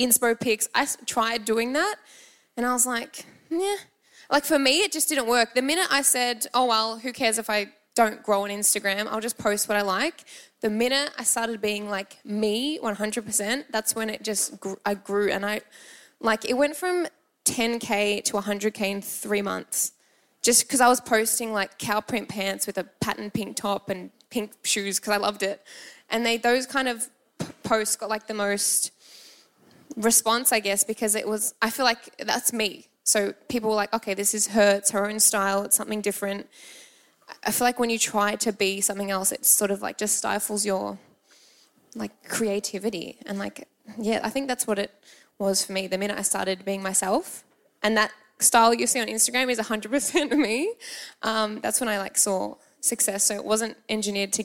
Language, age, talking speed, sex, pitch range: English, 10-29, 200 wpm, female, 205-245 Hz